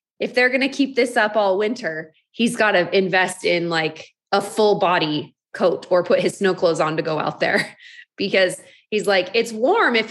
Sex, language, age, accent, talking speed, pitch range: female, English, 20-39, American, 210 wpm, 200-270 Hz